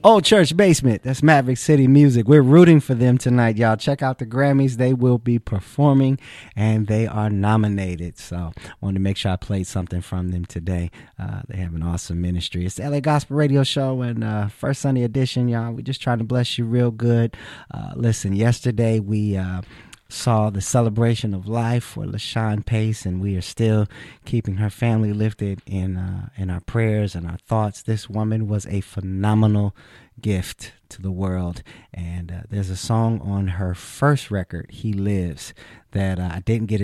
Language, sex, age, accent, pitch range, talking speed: English, male, 30-49, American, 95-115 Hz, 190 wpm